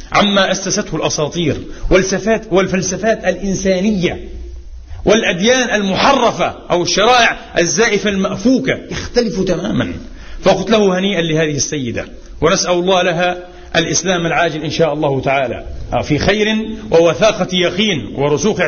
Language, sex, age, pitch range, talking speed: Arabic, male, 40-59, 180-230 Hz, 105 wpm